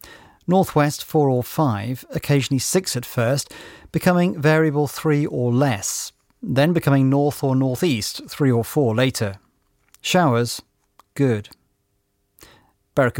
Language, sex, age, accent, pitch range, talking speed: English, male, 40-59, British, 115-155 Hz, 115 wpm